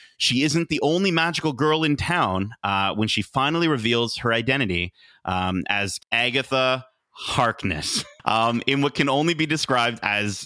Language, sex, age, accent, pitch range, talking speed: English, male, 30-49, American, 115-160 Hz, 155 wpm